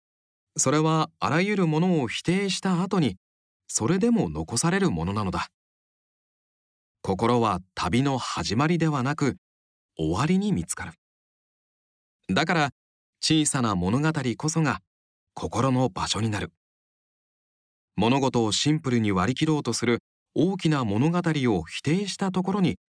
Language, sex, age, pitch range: Japanese, male, 40-59, 100-165 Hz